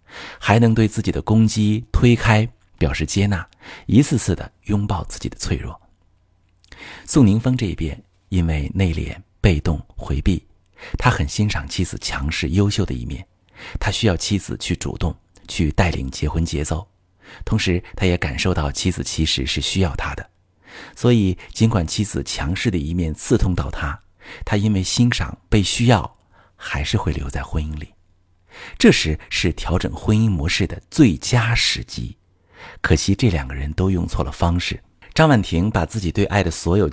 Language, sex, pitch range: Chinese, male, 80-100 Hz